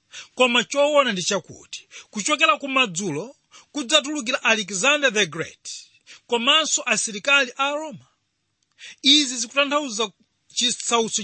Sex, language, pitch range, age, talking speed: male, English, 205-275 Hz, 40-59, 100 wpm